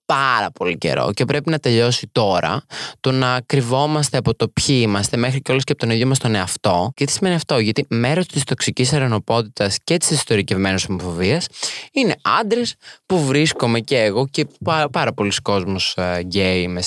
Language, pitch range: Greek, 100-140 Hz